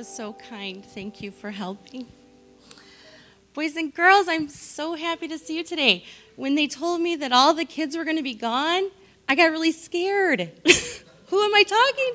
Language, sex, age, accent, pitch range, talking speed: English, female, 30-49, American, 220-335 Hz, 185 wpm